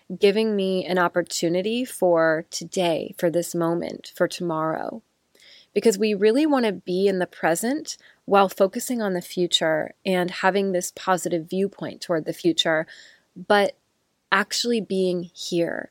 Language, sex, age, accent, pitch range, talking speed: English, female, 20-39, American, 175-210 Hz, 140 wpm